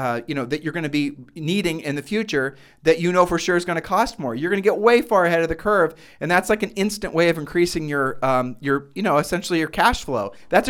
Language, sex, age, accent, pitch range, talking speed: English, male, 40-59, American, 135-170 Hz, 280 wpm